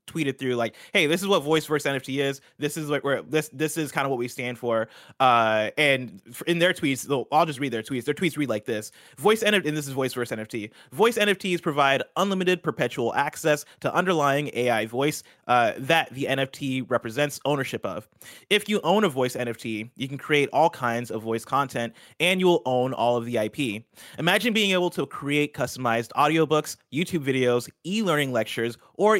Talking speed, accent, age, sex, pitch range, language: 195 wpm, American, 20-39, male, 115-155 Hz, English